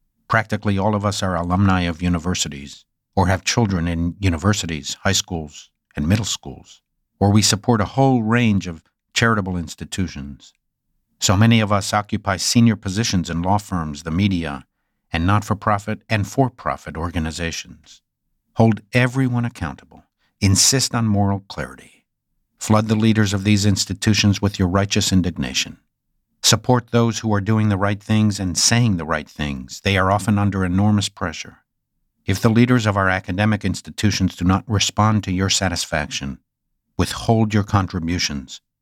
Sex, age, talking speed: male, 60-79, 150 wpm